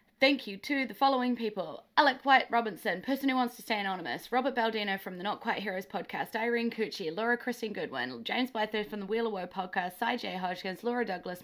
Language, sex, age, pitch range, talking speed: English, female, 20-39, 215-265 Hz, 210 wpm